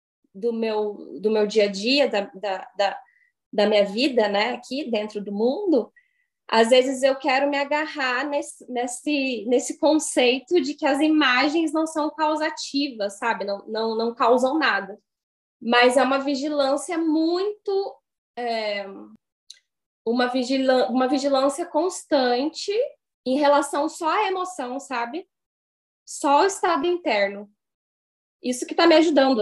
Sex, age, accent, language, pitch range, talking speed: female, 10-29, Brazilian, Portuguese, 220-295 Hz, 125 wpm